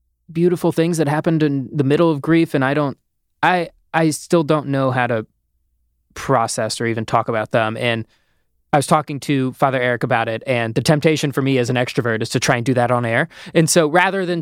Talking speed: 225 wpm